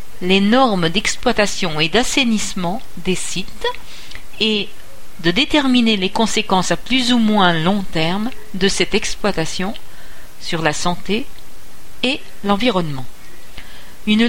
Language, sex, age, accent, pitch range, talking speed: French, female, 50-69, French, 185-230 Hz, 115 wpm